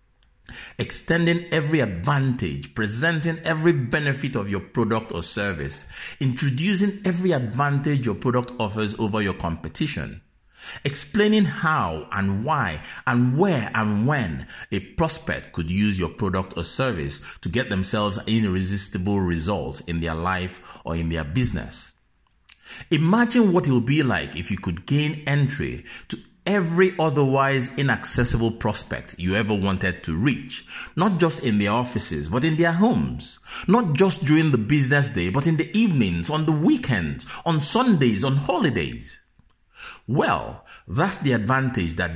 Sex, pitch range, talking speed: male, 95-150 Hz, 140 wpm